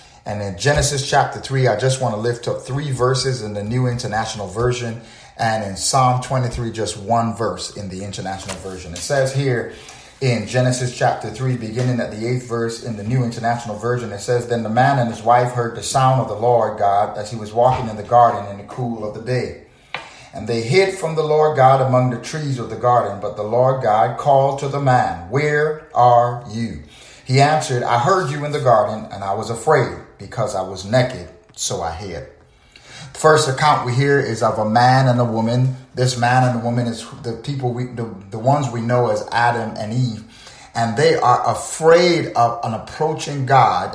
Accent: American